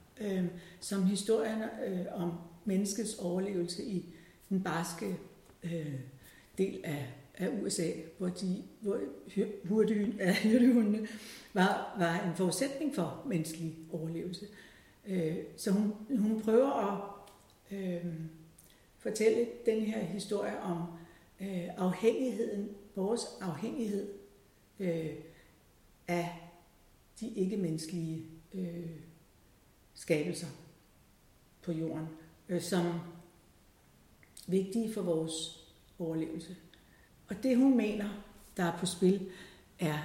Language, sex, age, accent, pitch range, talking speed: Danish, female, 60-79, native, 165-200 Hz, 100 wpm